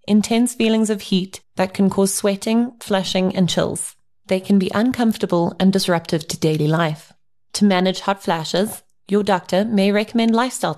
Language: English